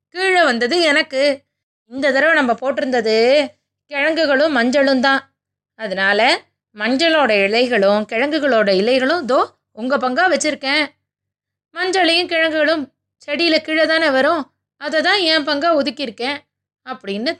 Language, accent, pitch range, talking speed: Tamil, native, 225-310 Hz, 105 wpm